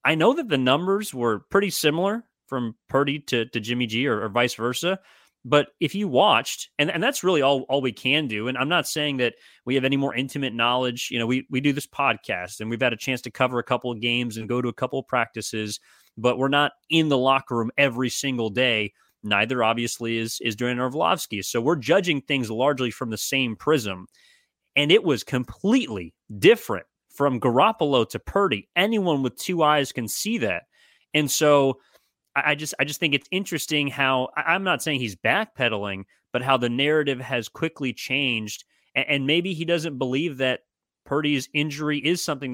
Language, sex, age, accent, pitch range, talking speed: English, male, 30-49, American, 120-150 Hz, 195 wpm